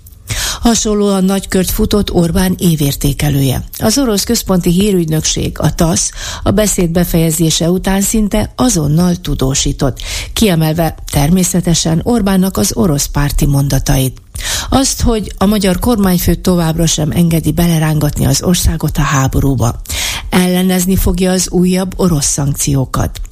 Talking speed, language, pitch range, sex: 115 wpm, Hungarian, 150-190 Hz, female